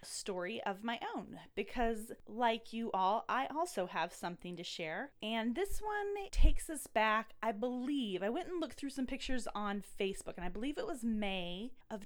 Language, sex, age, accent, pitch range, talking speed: English, female, 20-39, American, 195-245 Hz, 190 wpm